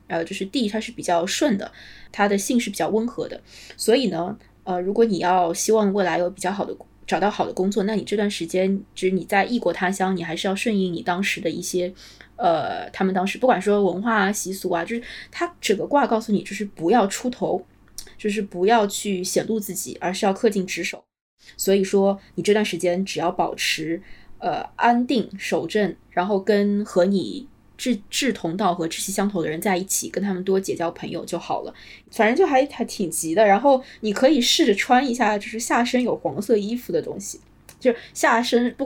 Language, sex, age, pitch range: Chinese, female, 20-39, 185-240 Hz